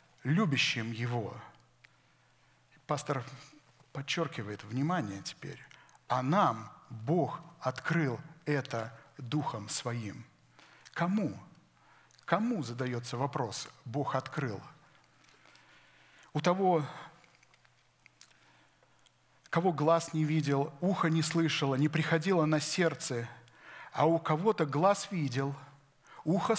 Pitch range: 135-175 Hz